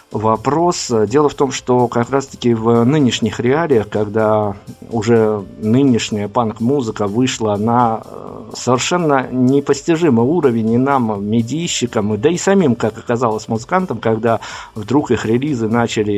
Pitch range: 110-135 Hz